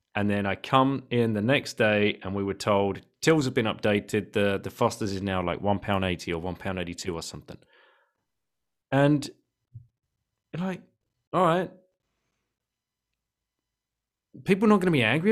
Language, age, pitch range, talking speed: English, 30-49, 105-140 Hz, 150 wpm